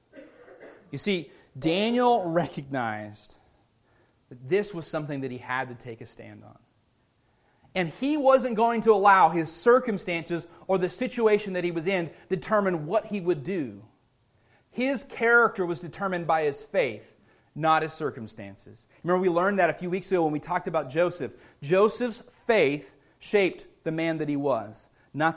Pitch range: 125-195 Hz